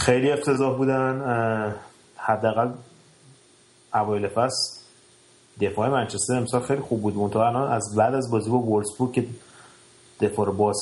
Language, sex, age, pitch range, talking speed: Persian, male, 30-49, 100-125 Hz, 130 wpm